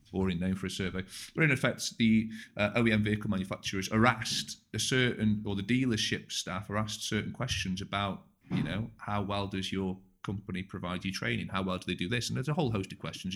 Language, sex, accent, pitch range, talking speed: English, male, British, 95-110 Hz, 220 wpm